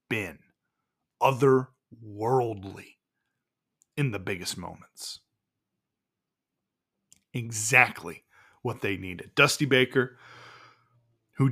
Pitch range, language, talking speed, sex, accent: 120-145 Hz, English, 70 wpm, male, American